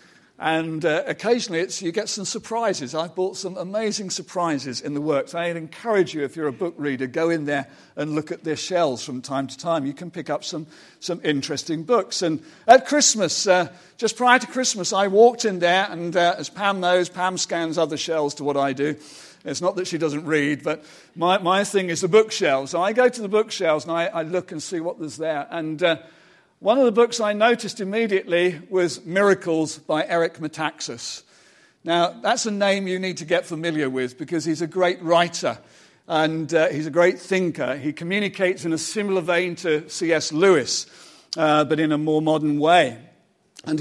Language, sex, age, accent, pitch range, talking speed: English, male, 50-69, British, 155-195 Hz, 205 wpm